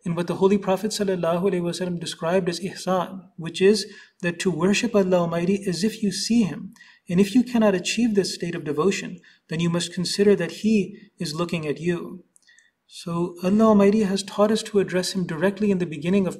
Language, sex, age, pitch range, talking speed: English, male, 30-49, 180-210 Hz, 200 wpm